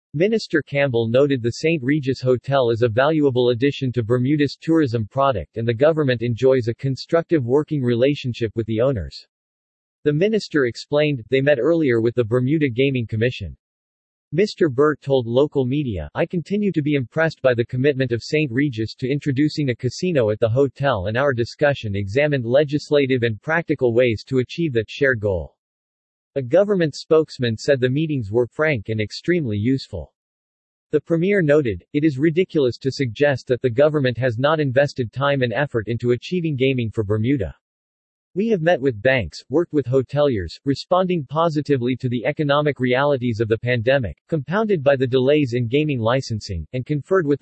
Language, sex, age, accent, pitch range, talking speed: English, male, 40-59, American, 120-150 Hz, 170 wpm